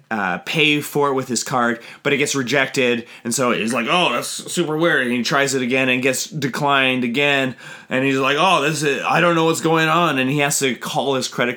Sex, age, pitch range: male, 20-39, 115-140 Hz